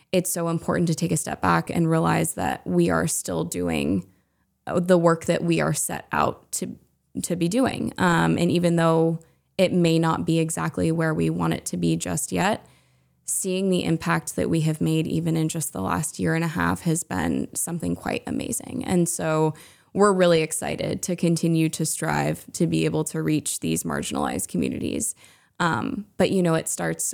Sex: female